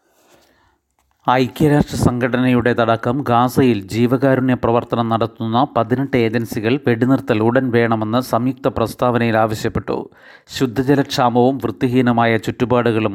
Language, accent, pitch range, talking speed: Malayalam, native, 115-130 Hz, 80 wpm